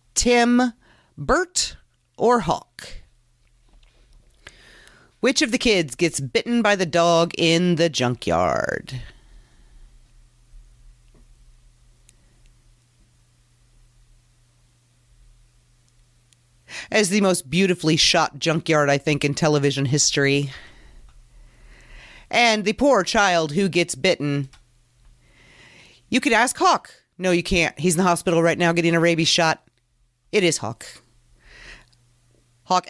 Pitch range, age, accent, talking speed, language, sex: 120-185 Hz, 30-49, American, 100 wpm, English, female